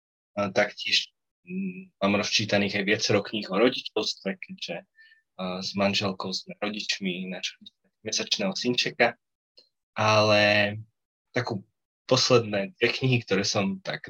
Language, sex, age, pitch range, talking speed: Slovak, male, 20-39, 95-115 Hz, 100 wpm